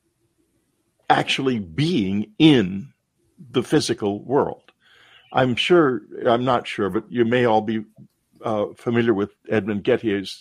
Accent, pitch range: American, 110-135 Hz